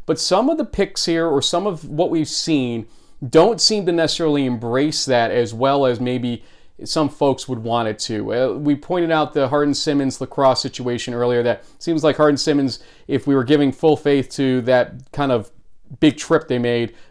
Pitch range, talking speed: 125-155 Hz, 190 wpm